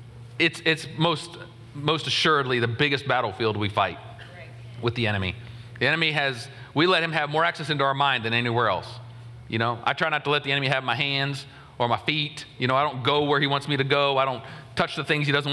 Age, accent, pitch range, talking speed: 40-59, American, 115-145 Hz, 235 wpm